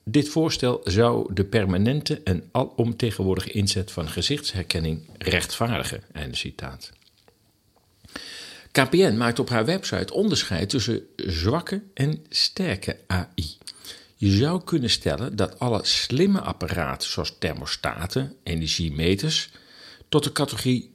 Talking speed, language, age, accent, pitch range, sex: 105 wpm, Dutch, 50-69, Dutch, 85-120 Hz, male